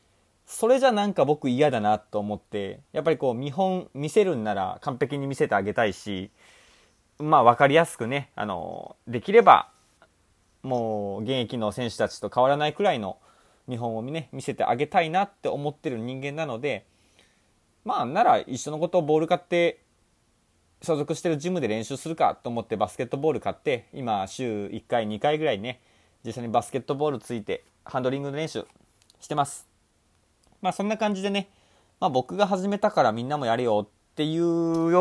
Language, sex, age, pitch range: Japanese, male, 20-39, 110-170 Hz